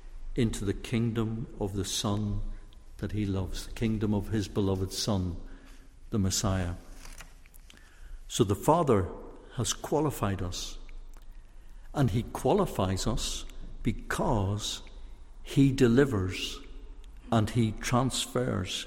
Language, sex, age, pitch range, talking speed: English, male, 60-79, 90-110 Hz, 105 wpm